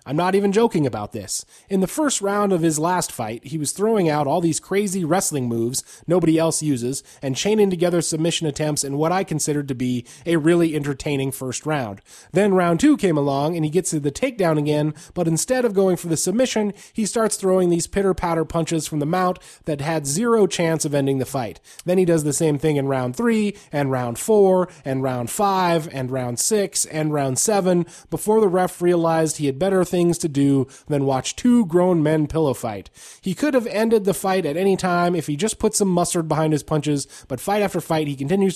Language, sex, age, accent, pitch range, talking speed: English, male, 30-49, American, 140-185 Hz, 220 wpm